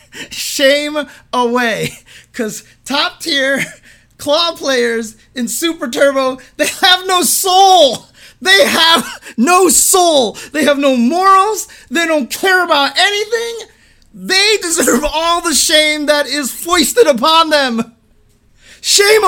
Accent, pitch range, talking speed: American, 220-300 Hz, 115 wpm